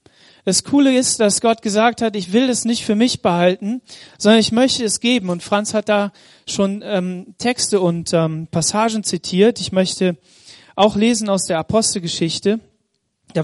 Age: 30-49